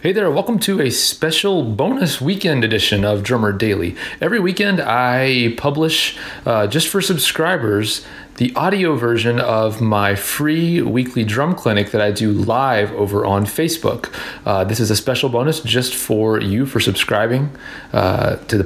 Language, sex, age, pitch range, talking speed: English, male, 30-49, 115-155 Hz, 160 wpm